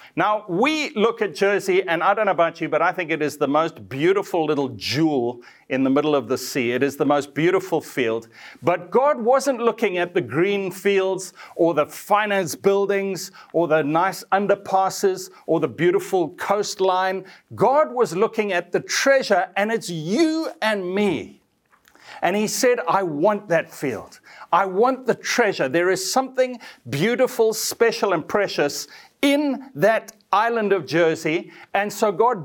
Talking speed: 165 wpm